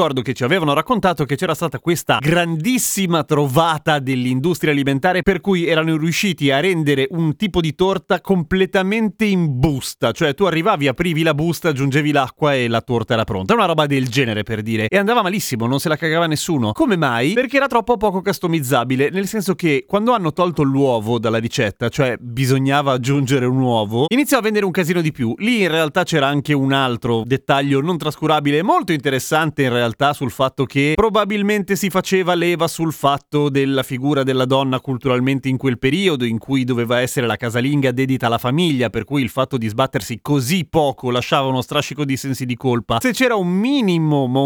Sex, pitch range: male, 130-175 Hz